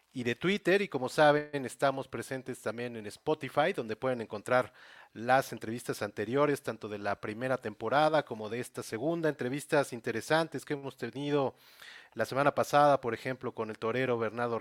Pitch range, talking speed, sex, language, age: 115-145 Hz, 165 wpm, male, Spanish, 40-59